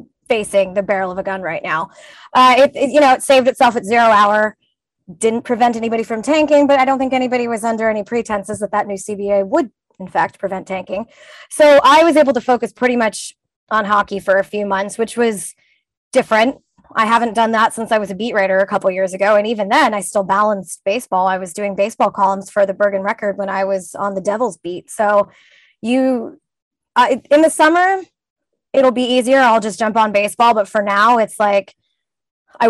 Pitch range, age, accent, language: 195-235 Hz, 20-39, American, English